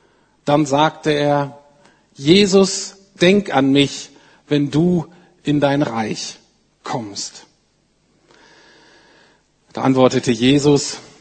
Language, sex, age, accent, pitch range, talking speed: German, male, 50-69, German, 125-165 Hz, 85 wpm